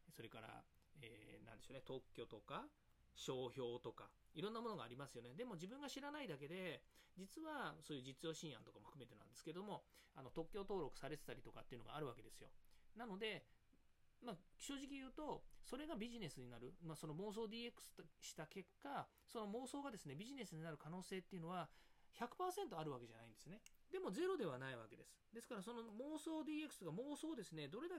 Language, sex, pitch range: Japanese, male, 150-225 Hz